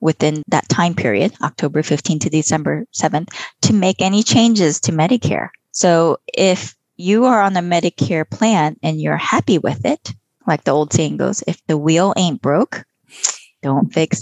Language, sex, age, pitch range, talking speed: English, female, 20-39, 150-180 Hz, 170 wpm